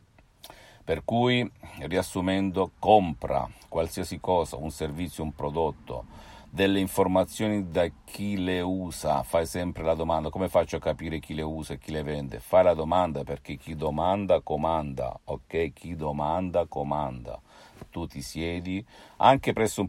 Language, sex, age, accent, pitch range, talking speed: Italian, male, 50-69, native, 75-95 Hz, 145 wpm